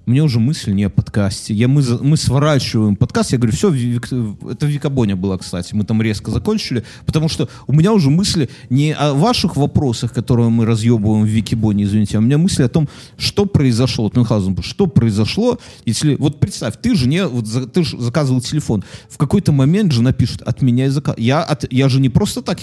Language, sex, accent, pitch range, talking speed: Russian, male, native, 110-145 Hz, 195 wpm